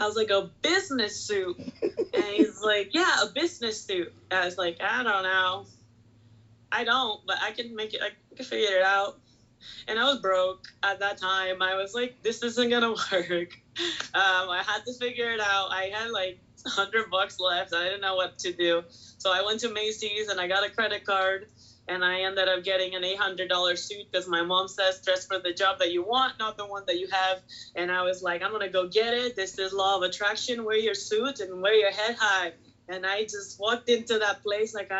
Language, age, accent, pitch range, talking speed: English, 20-39, American, 185-220 Hz, 230 wpm